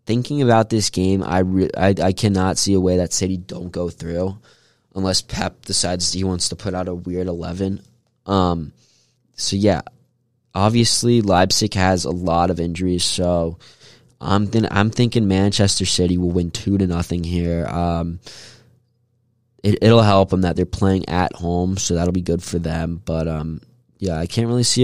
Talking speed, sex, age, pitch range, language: 180 wpm, male, 20-39, 85-110 Hz, English